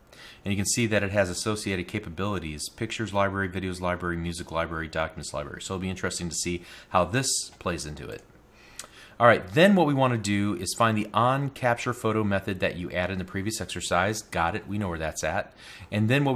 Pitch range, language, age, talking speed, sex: 90-110 Hz, English, 30-49, 215 wpm, male